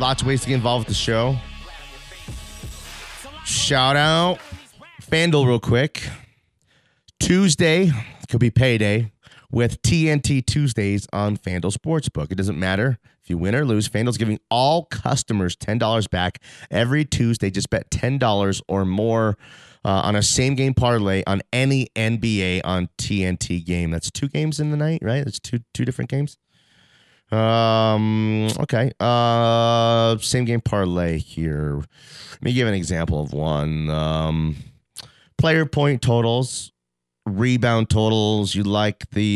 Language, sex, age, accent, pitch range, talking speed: English, male, 30-49, American, 95-125 Hz, 140 wpm